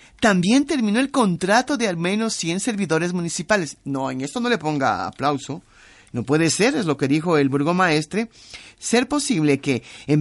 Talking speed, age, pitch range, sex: 175 wpm, 50-69, 140-220 Hz, male